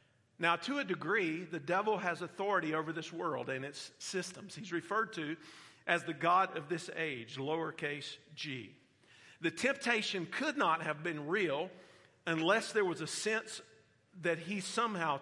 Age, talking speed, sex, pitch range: 50-69, 160 wpm, male, 160-195 Hz